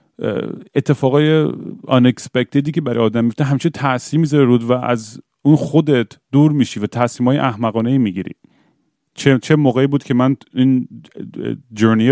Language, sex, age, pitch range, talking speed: Persian, male, 30-49, 115-140 Hz, 130 wpm